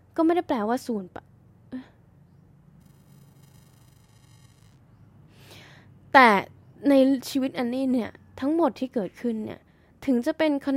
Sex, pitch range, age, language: female, 190-260 Hz, 10-29, Thai